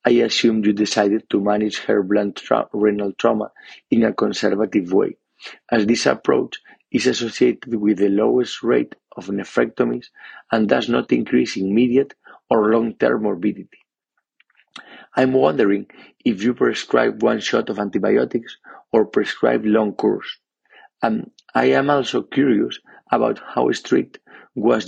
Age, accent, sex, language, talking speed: 40-59, Spanish, male, English, 135 wpm